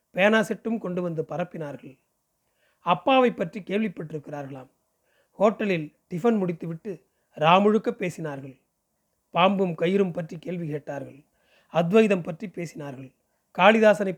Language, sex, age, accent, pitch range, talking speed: Tamil, male, 30-49, native, 160-215 Hz, 90 wpm